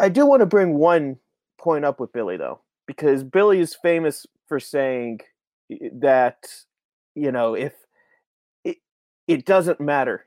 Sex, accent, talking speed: male, American, 145 wpm